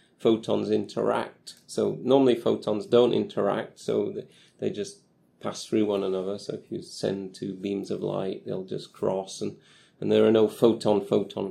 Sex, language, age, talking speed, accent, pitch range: male, English, 30-49, 160 wpm, British, 100-115 Hz